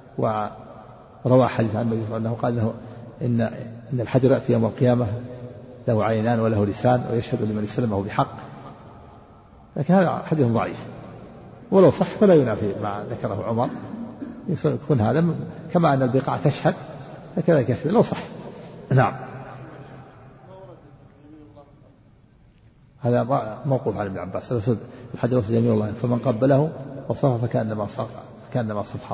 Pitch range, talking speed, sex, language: 115-145 Hz, 115 wpm, male, Arabic